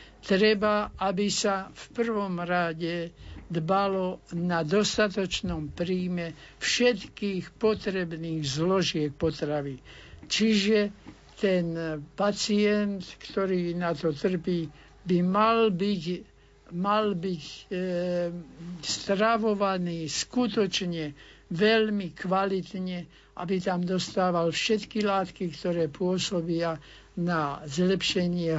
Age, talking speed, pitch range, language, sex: 60-79, 80 wpm, 165-195 Hz, Slovak, male